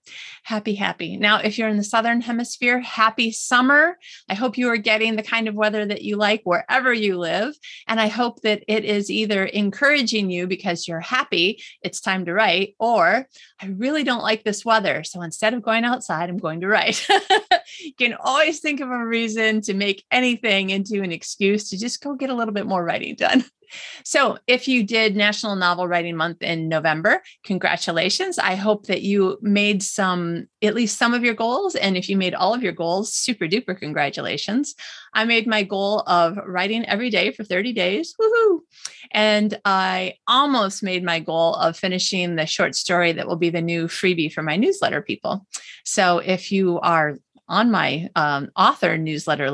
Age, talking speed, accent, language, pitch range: 30-49, 190 wpm, American, English, 180-230 Hz